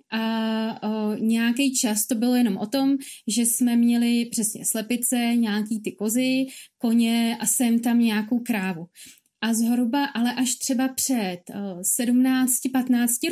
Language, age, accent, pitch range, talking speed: Czech, 30-49, native, 215-250 Hz, 135 wpm